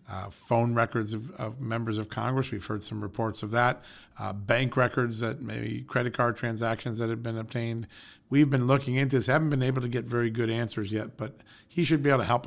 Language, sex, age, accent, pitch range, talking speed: English, male, 40-59, American, 110-125 Hz, 225 wpm